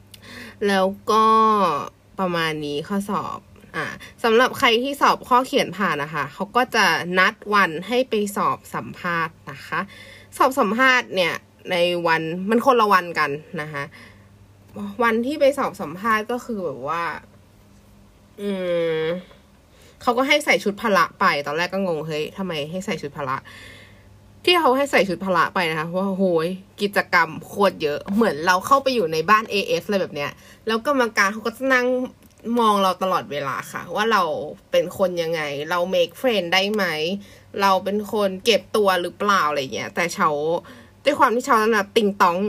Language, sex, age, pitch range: Thai, female, 20-39, 155-225 Hz